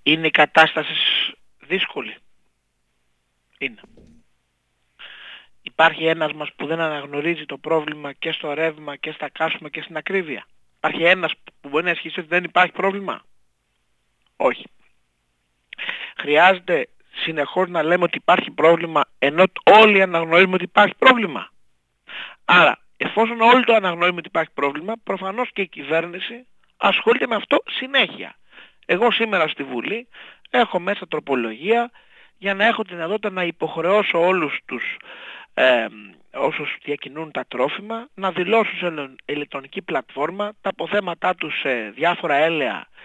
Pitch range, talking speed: 145-195 Hz, 130 wpm